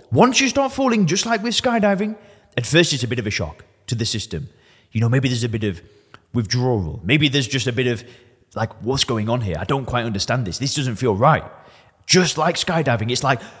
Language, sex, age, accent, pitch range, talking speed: English, male, 30-49, British, 120-180 Hz, 230 wpm